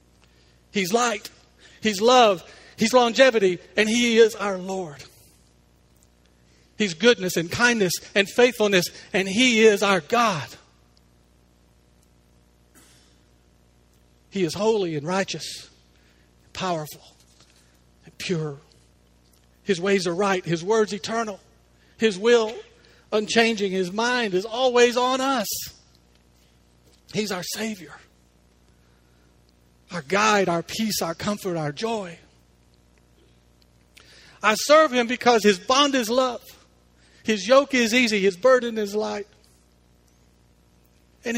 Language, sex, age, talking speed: English, male, 50-69, 105 wpm